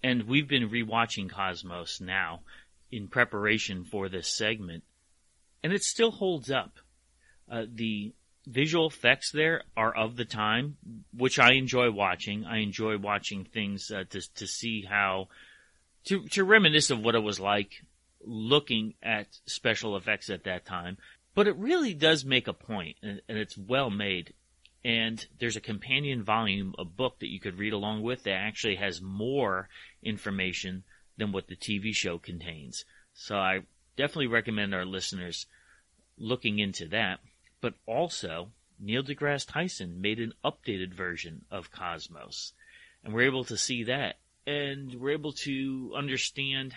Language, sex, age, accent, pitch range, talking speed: English, male, 30-49, American, 100-130 Hz, 155 wpm